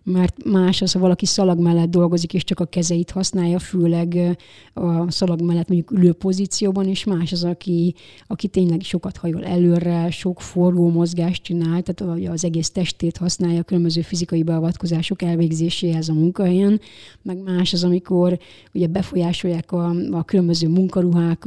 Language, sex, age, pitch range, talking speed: Hungarian, female, 30-49, 170-190 Hz, 155 wpm